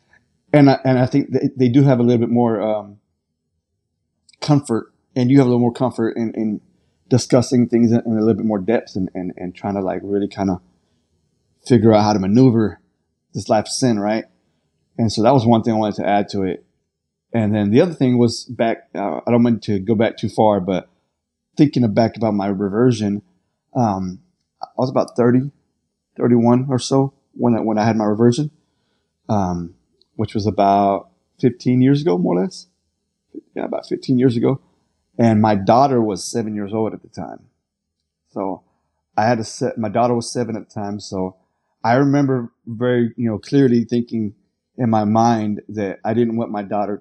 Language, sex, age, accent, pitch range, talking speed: English, male, 20-39, American, 100-120 Hz, 195 wpm